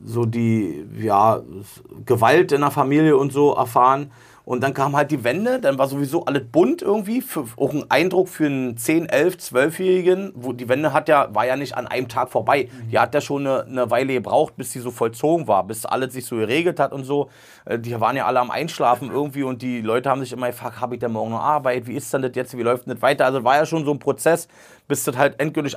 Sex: male